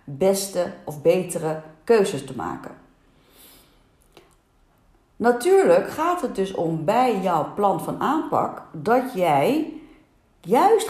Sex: female